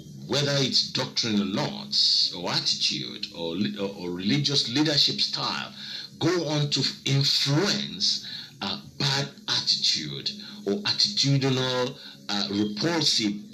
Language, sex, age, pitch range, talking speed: English, male, 50-69, 110-180 Hz, 105 wpm